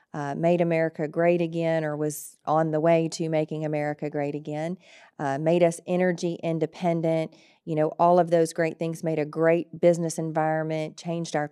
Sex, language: female, English